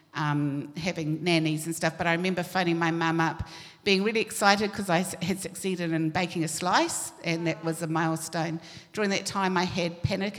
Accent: British